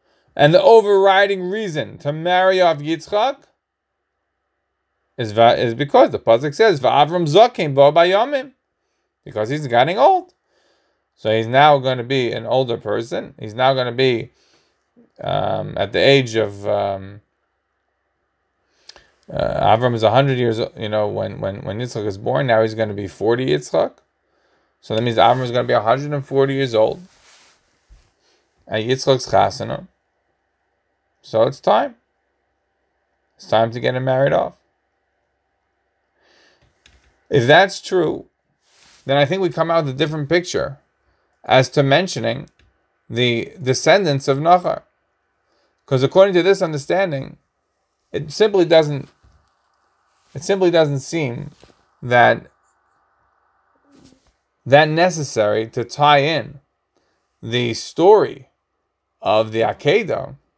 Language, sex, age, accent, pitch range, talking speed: English, male, 20-39, American, 115-165 Hz, 130 wpm